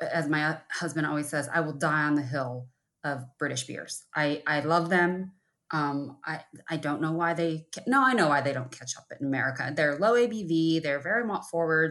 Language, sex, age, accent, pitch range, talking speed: English, female, 20-39, American, 140-175 Hz, 215 wpm